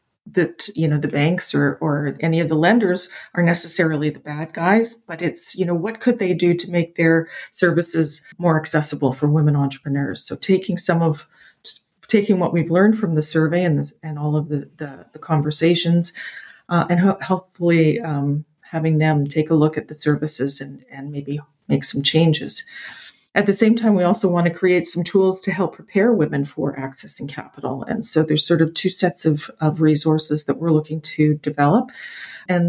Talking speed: 190 wpm